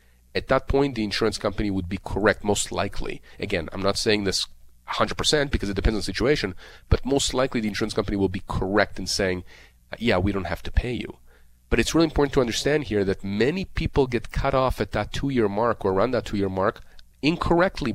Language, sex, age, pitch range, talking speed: English, male, 40-59, 95-140 Hz, 215 wpm